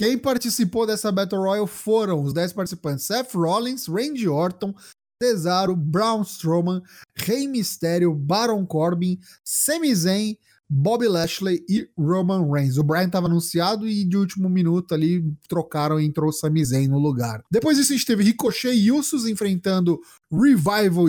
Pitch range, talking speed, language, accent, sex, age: 155-220 Hz, 150 wpm, Portuguese, Brazilian, male, 20-39